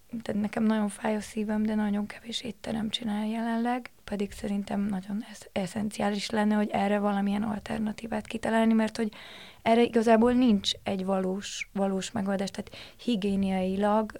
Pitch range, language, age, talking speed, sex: 200-225 Hz, Hungarian, 20-39, 145 wpm, female